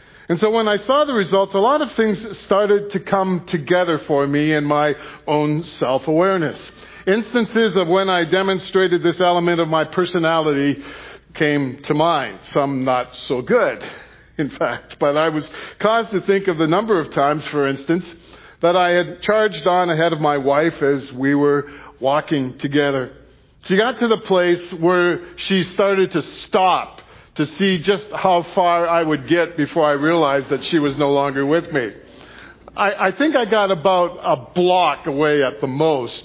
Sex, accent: male, American